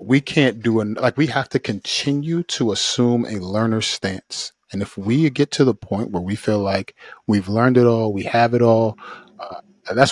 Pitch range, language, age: 105-125 Hz, English, 30-49